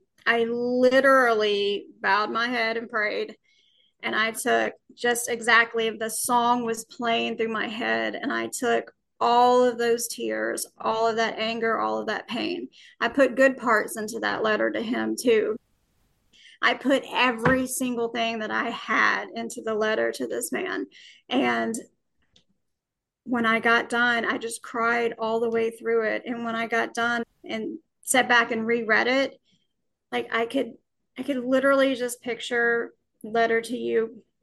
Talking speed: 160 wpm